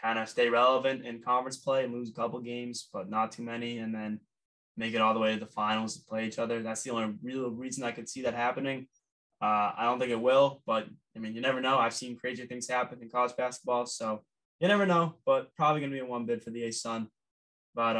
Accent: American